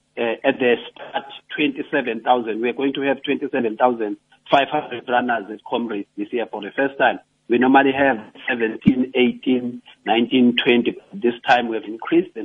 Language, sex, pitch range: English, male, 105-135 Hz